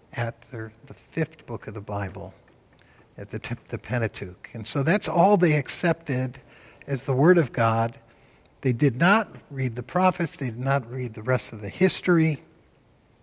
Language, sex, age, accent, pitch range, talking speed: English, male, 60-79, American, 115-165 Hz, 170 wpm